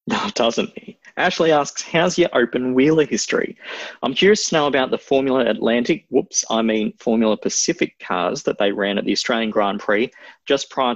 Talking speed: 185 wpm